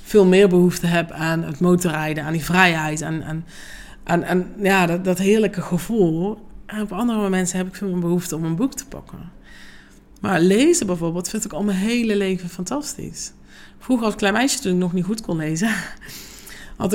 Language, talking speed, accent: Dutch, 190 wpm, Dutch